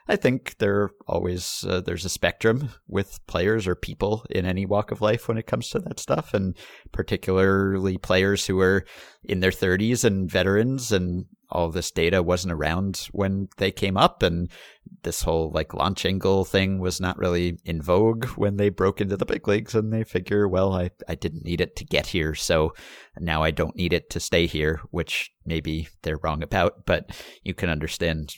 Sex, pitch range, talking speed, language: male, 85-105 Hz, 195 wpm, English